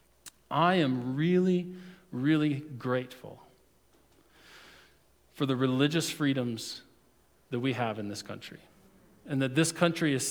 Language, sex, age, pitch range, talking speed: English, male, 40-59, 140-190 Hz, 115 wpm